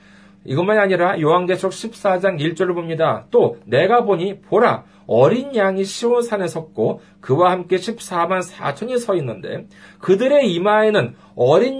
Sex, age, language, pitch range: male, 40-59, Korean, 130-205 Hz